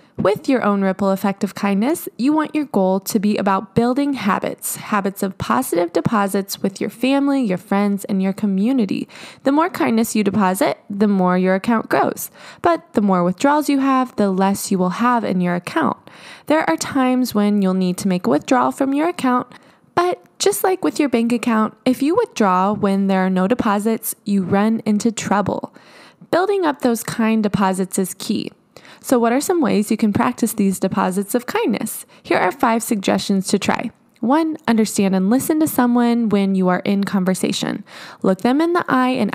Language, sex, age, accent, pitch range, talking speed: English, female, 20-39, American, 195-260 Hz, 190 wpm